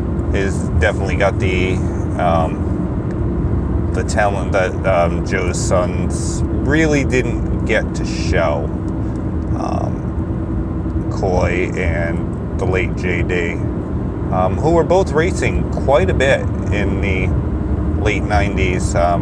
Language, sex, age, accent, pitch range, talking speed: English, male, 30-49, American, 85-105 Hz, 110 wpm